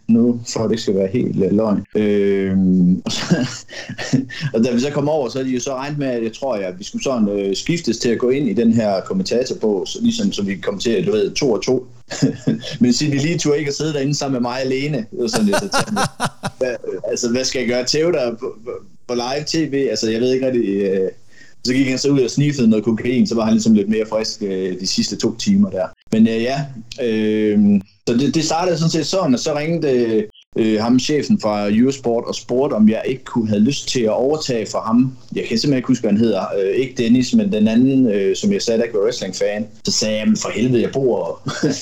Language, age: Danish, 30-49